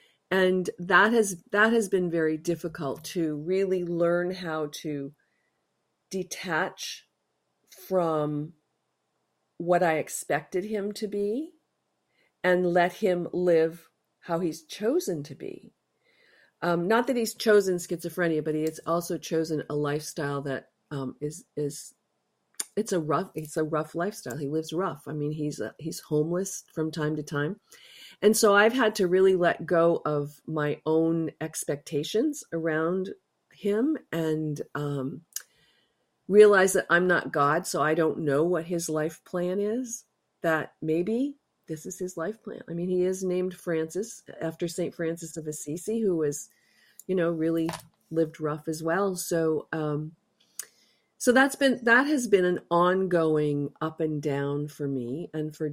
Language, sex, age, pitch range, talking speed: English, female, 40-59, 155-190 Hz, 150 wpm